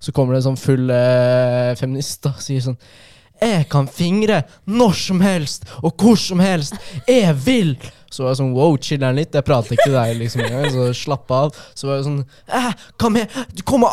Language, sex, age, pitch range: English, male, 20-39, 120-145 Hz